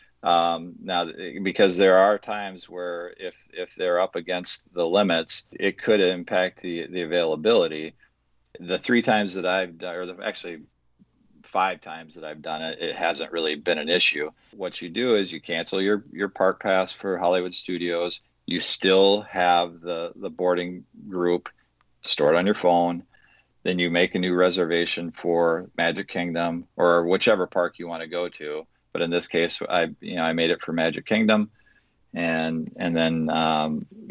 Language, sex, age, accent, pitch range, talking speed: English, male, 40-59, American, 85-90 Hz, 175 wpm